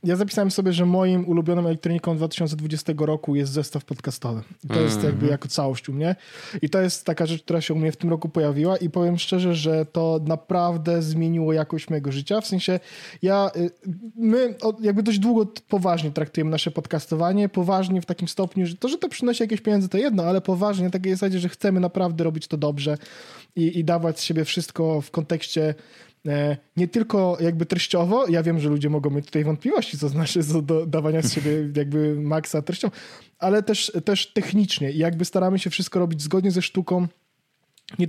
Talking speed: 185 wpm